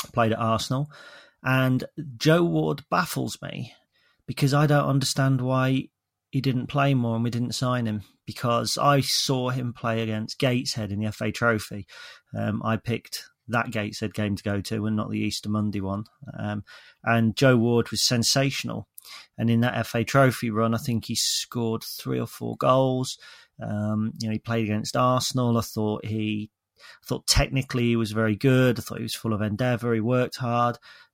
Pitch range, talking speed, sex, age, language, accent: 110-130 Hz, 185 wpm, male, 40-59, English, British